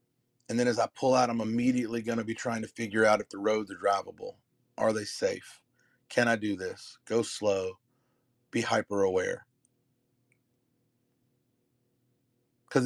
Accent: American